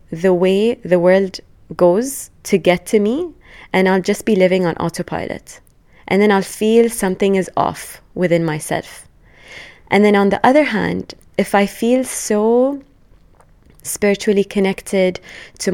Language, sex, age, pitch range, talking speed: English, female, 20-39, 180-215 Hz, 145 wpm